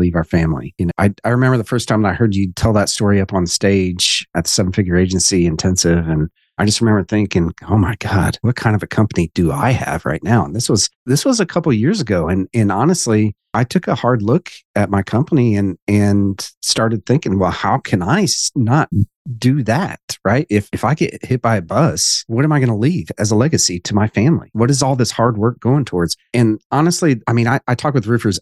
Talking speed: 240 wpm